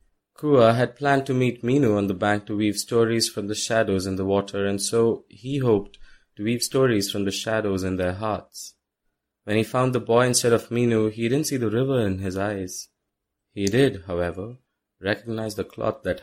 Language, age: English, 20-39